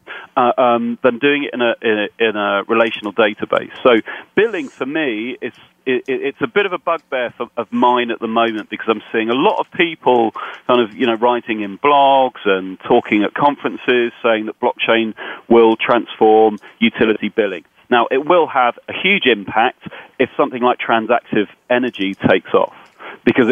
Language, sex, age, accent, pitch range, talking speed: English, male, 40-59, British, 105-130 Hz, 180 wpm